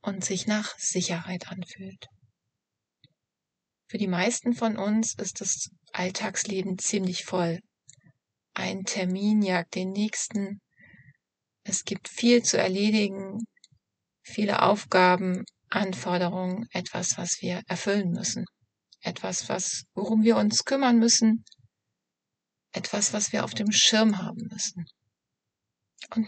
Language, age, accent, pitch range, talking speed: German, 30-49, German, 180-210 Hz, 110 wpm